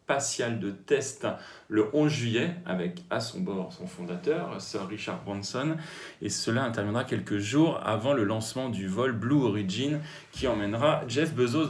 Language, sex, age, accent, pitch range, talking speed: French, male, 40-59, French, 110-150 Hz, 155 wpm